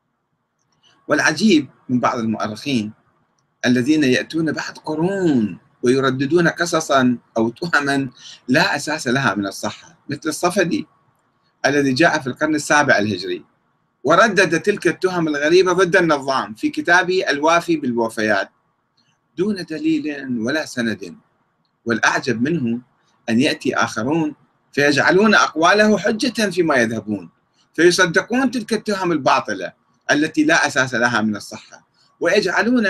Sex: male